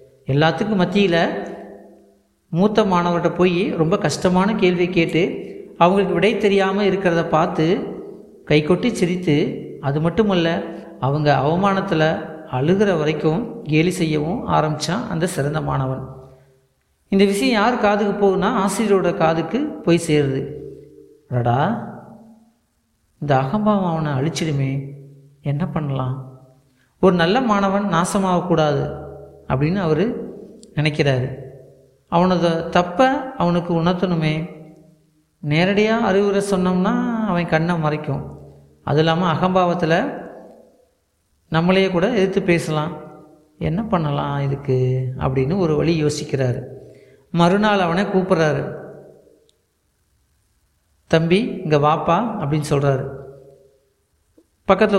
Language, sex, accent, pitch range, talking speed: Tamil, male, native, 145-190 Hz, 90 wpm